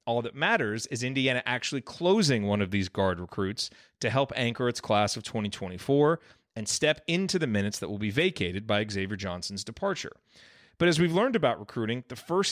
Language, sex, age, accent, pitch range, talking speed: English, male, 30-49, American, 105-135 Hz, 190 wpm